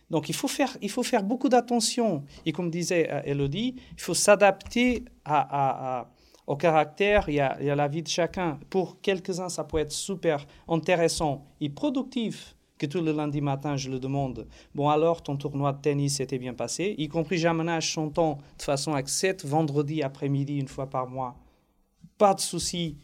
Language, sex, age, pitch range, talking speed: French, male, 40-59, 140-180 Hz, 190 wpm